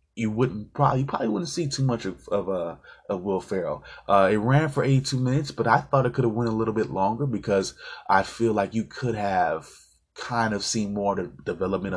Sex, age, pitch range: male, 20-39, 95-115 Hz